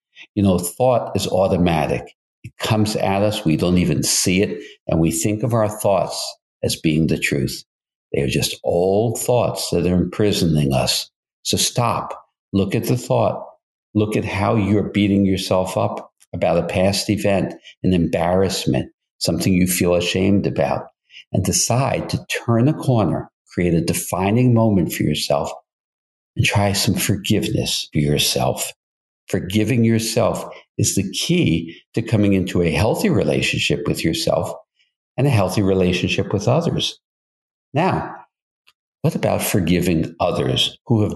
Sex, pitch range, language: male, 90-115 Hz, English